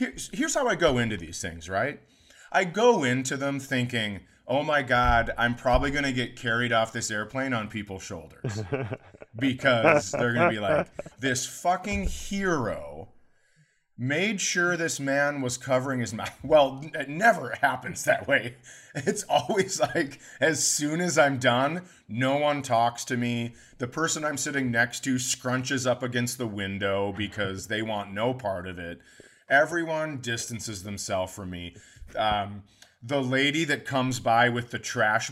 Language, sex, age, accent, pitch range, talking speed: English, male, 30-49, American, 115-145 Hz, 165 wpm